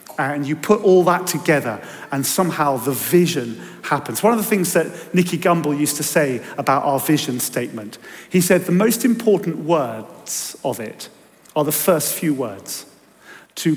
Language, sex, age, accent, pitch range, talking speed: English, male, 40-59, British, 150-190 Hz, 170 wpm